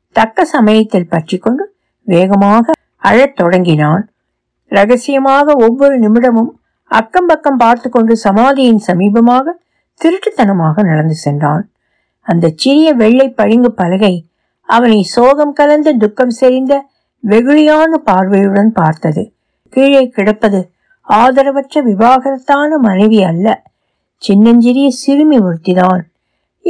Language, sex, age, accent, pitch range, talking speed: Tamil, female, 60-79, native, 185-265 Hz, 85 wpm